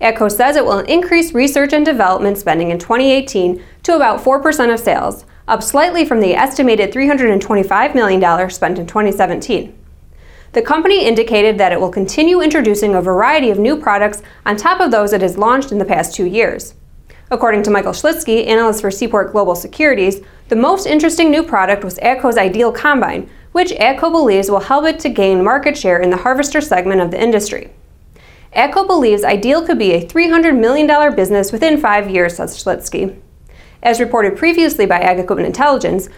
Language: English